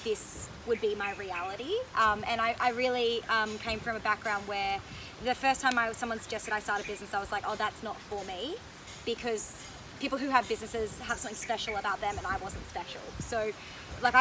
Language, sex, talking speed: English, female, 215 wpm